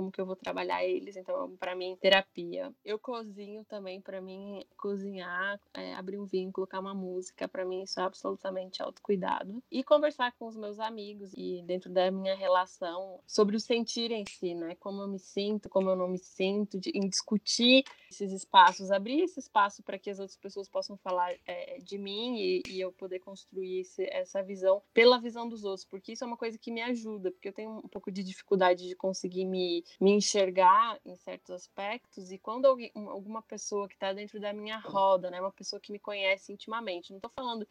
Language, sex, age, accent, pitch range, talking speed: Portuguese, female, 10-29, Brazilian, 190-215 Hz, 205 wpm